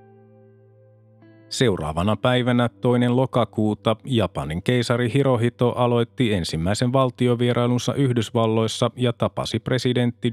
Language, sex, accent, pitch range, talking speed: Finnish, male, native, 105-130 Hz, 80 wpm